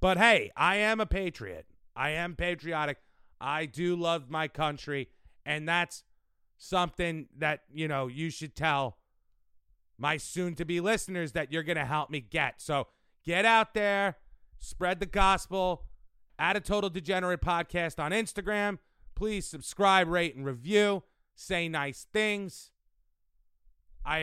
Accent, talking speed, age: American, 140 wpm, 30-49